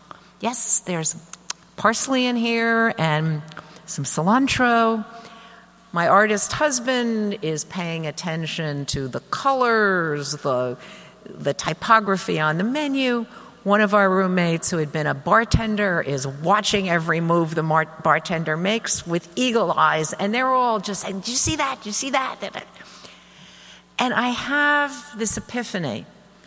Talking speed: 140 wpm